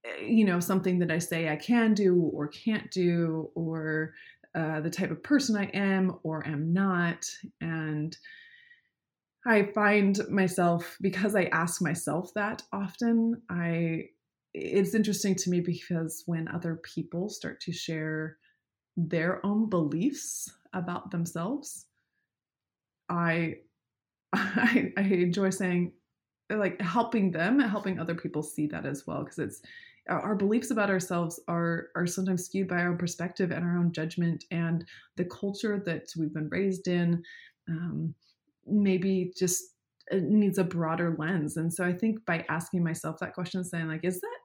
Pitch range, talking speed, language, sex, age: 165-205 Hz, 150 wpm, English, female, 20-39